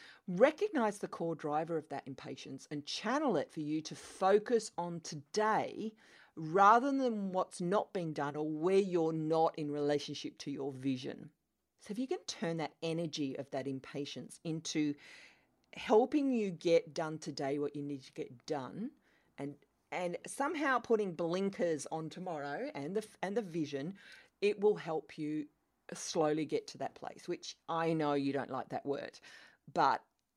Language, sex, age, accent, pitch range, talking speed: English, female, 40-59, Australian, 145-200 Hz, 165 wpm